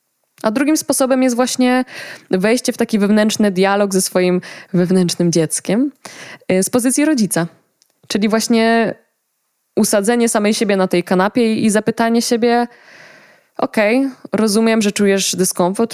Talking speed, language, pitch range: 130 wpm, Polish, 185-225 Hz